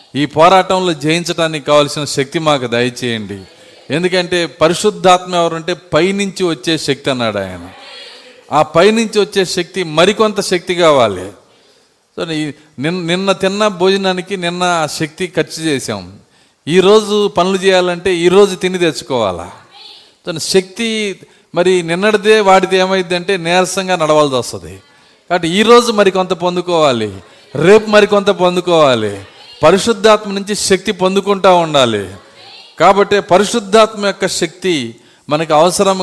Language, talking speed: Telugu, 105 wpm